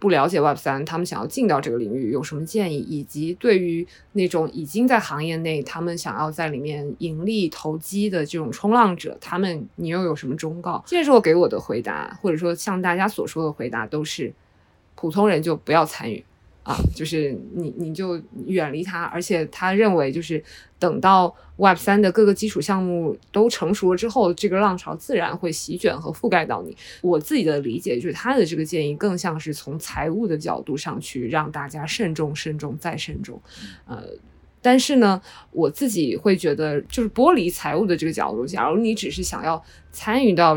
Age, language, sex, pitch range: 20-39, Chinese, female, 160-200 Hz